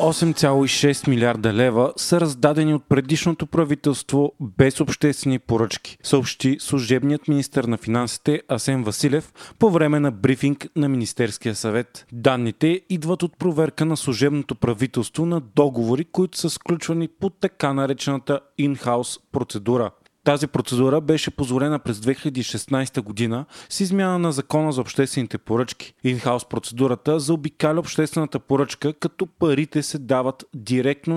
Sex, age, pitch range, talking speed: male, 30-49, 125-155 Hz, 125 wpm